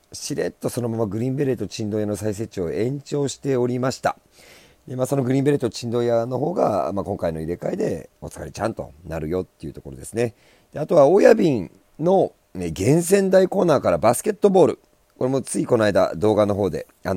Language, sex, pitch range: Japanese, male, 85-135 Hz